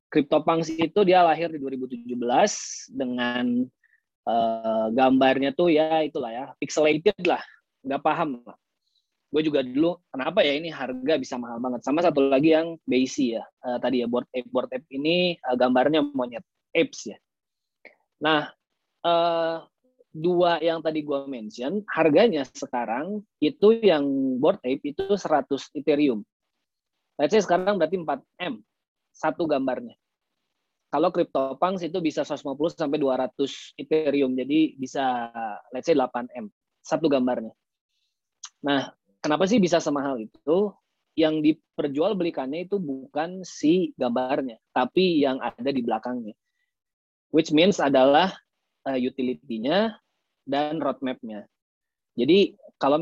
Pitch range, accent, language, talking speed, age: 125-165 Hz, native, Indonesian, 125 wpm, 20-39